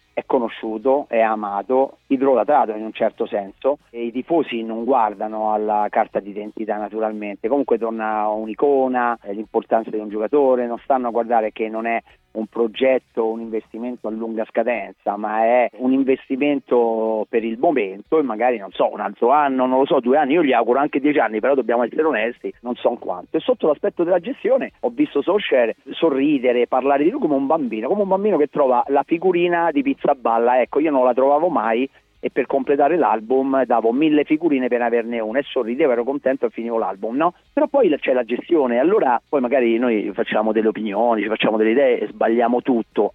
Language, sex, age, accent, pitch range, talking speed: Italian, male, 40-59, native, 110-140 Hz, 195 wpm